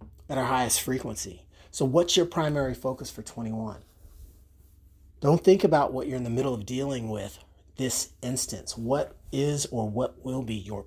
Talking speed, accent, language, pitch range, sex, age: 170 wpm, American, English, 85-130 Hz, male, 30-49